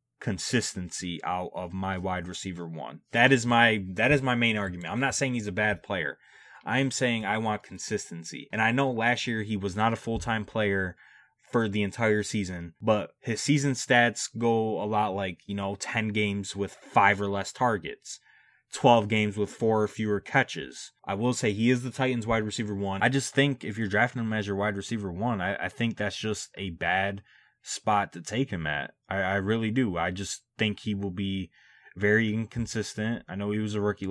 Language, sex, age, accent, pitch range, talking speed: English, male, 20-39, American, 100-115 Hz, 210 wpm